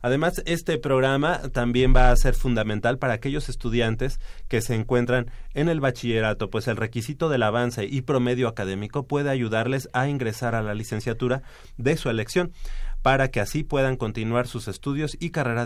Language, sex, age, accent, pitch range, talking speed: Spanish, male, 30-49, Mexican, 110-135 Hz, 170 wpm